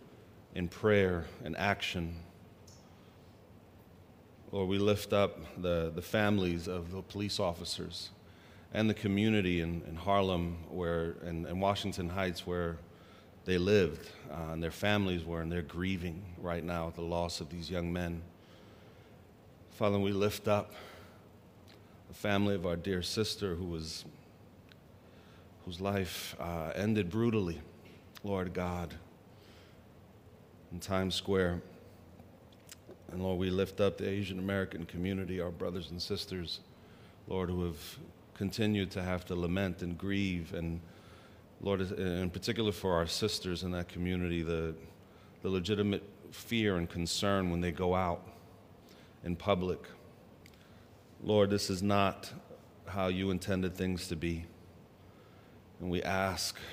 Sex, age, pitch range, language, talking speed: male, 30-49, 85-100 Hz, English, 135 wpm